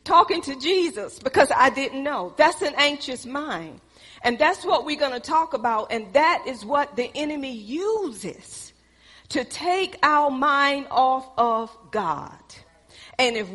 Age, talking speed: 40-59, 155 wpm